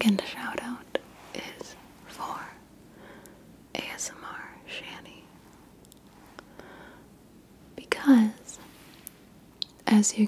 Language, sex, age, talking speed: English, female, 30-49, 60 wpm